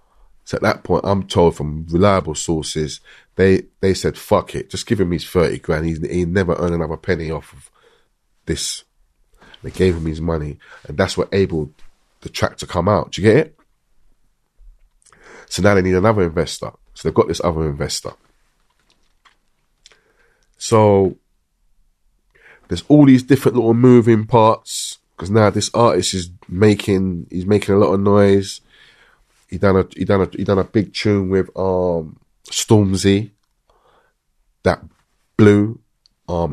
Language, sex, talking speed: English, male, 160 wpm